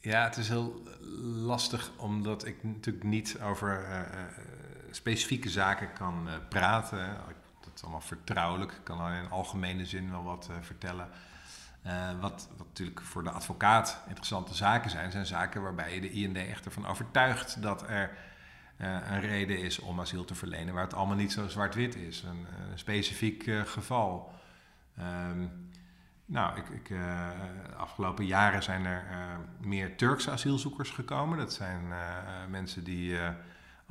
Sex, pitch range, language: male, 90-105 Hz, Dutch